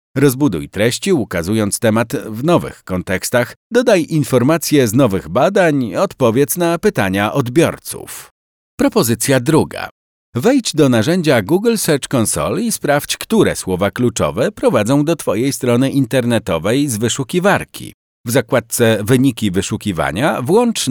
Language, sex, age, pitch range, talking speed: Polish, male, 50-69, 105-150 Hz, 120 wpm